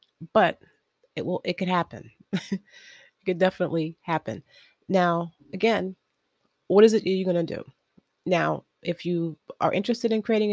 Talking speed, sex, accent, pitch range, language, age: 140 wpm, female, American, 170-210 Hz, English, 30-49